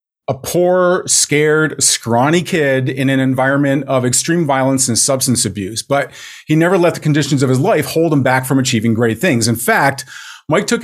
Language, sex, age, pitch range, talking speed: English, male, 40-59, 130-170 Hz, 190 wpm